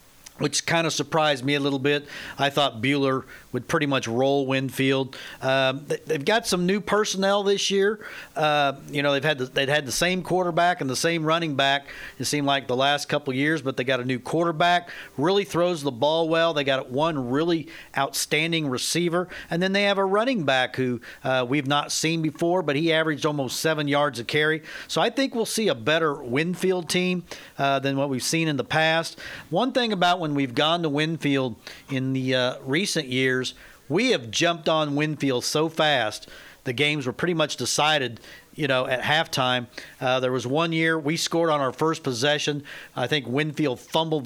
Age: 50-69